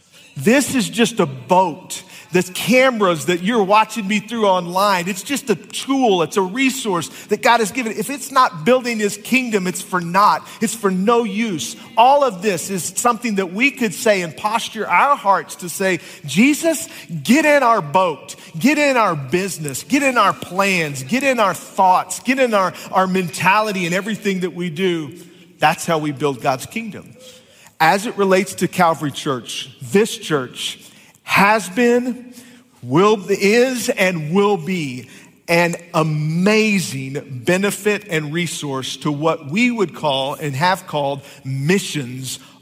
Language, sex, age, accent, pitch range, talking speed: English, male, 40-59, American, 160-210 Hz, 160 wpm